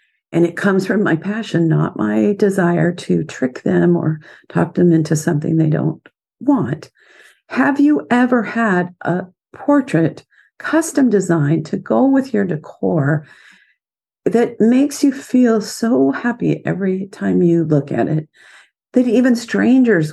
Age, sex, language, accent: 50-69, female, English, American